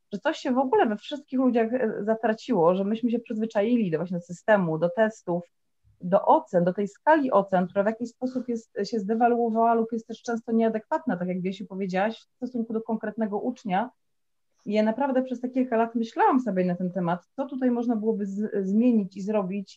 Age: 30-49